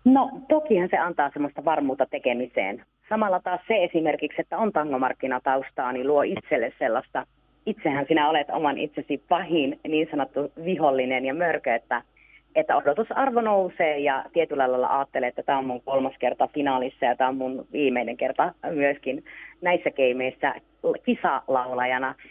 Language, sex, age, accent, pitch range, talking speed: Finnish, female, 30-49, native, 135-185 Hz, 145 wpm